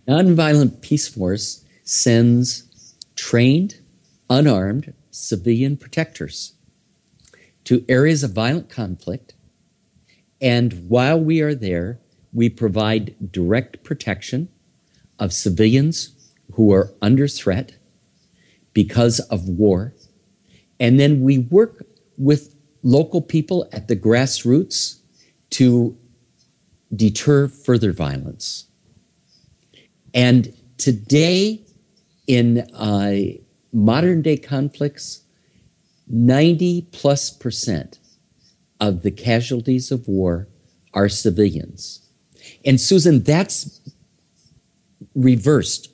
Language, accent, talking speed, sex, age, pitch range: English, American, 85 wpm, male, 50-69, 105-145 Hz